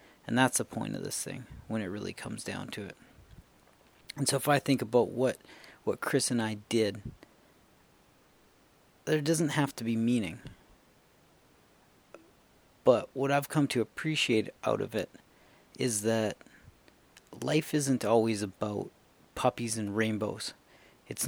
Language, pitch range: English, 110-135 Hz